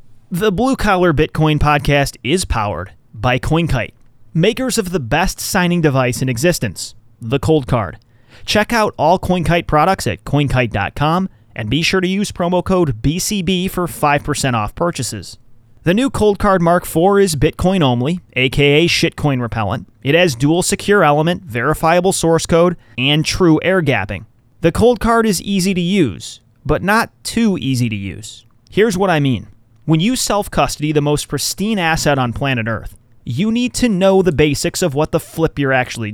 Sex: male